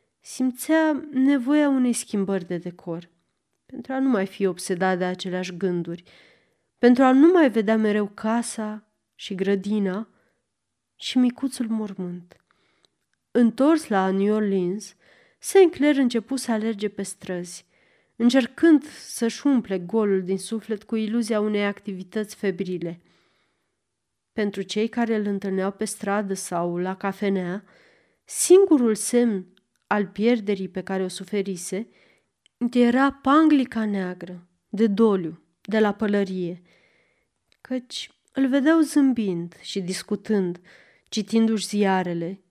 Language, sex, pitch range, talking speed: Romanian, female, 190-235 Hz, 115 wpm